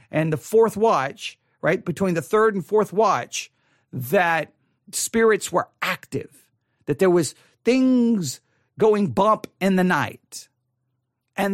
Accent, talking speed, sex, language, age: American, 130 wpm, male, English, 50-69